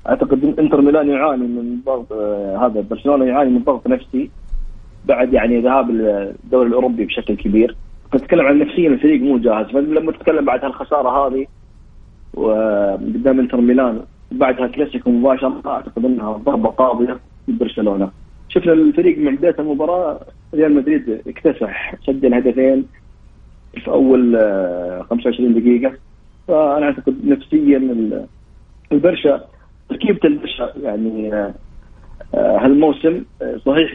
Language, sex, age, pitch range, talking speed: Arabic, male, 30-49, 115-150 Hz, 120 wpm